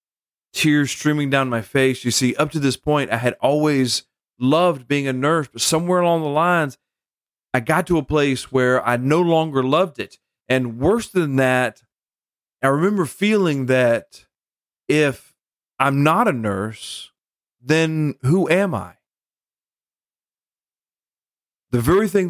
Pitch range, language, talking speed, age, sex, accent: 115-150 Hz, English, 145 wpm, 40-59, male, American